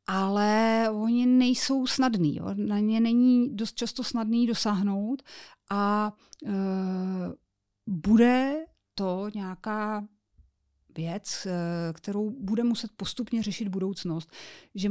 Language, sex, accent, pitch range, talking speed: Czech, female, native, 185-230 Hz, 100 wpm